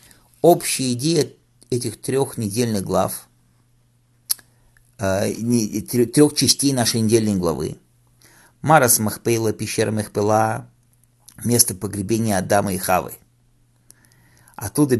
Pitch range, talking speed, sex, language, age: 110-125 Hz, 85 wpm, male, English, 50-69